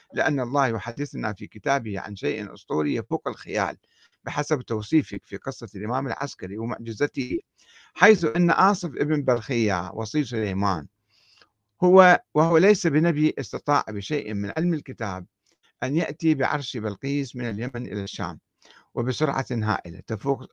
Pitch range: 110-150 Hz